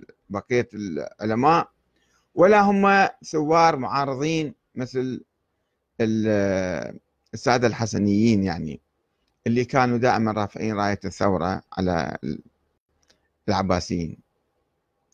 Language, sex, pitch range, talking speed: Arabic, male, 110-155 Hz, 70 wpm